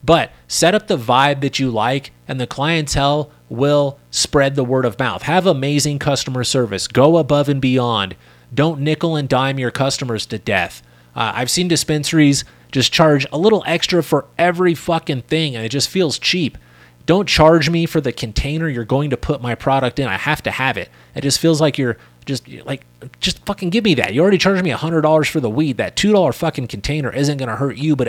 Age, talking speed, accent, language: 30-49, 210 wpm, American, English